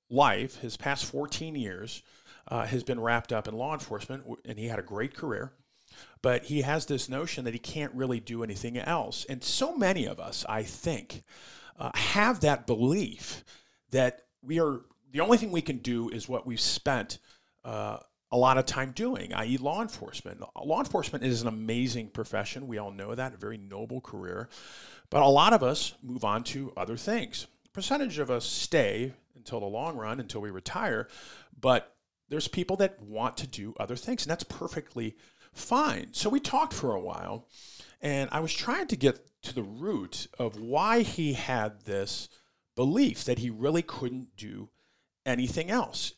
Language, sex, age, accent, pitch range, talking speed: English, male, 40-59, American, 115-155 Hz, 185 wpm